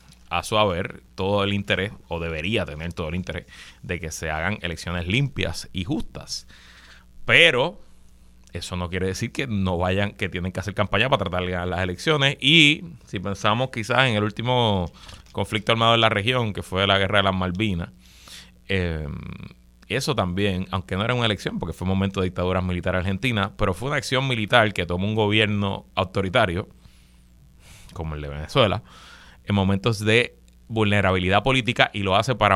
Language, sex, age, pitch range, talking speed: Spanish, male, 30-49, 90-115 Hz, 180 wpm